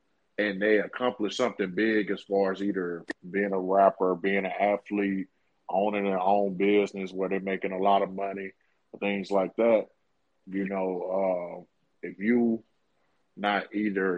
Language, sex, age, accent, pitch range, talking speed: English, male, 20-39, American, 95-105 Hz, 150 wpm